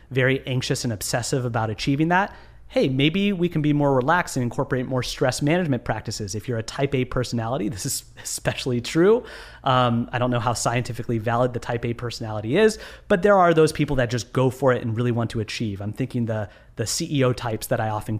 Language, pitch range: English, 120-145 Hz